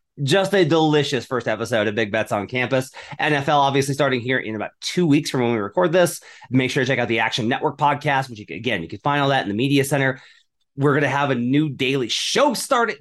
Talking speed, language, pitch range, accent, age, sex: 250 wpm, English, 120-150 Hz, American, 30-49, male